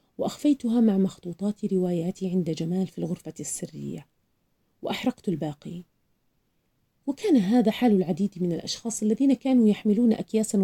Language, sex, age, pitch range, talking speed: Arabic, female, 40-59, 185-255 Hz, 120 wpm